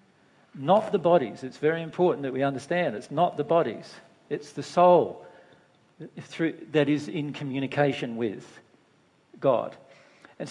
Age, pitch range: 50-69, 140-180 Hz